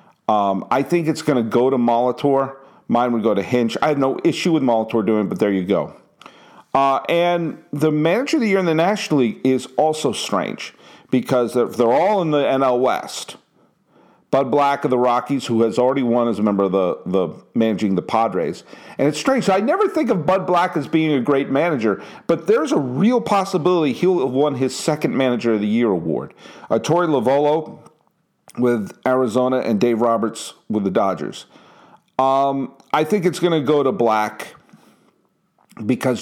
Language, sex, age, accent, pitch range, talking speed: English, male, 50-69, American, 115-160 Hz, 190 wpm